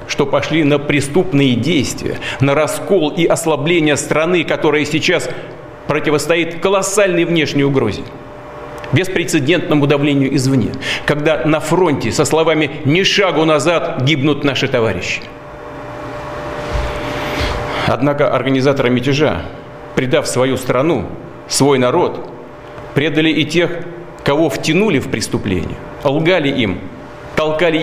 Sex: male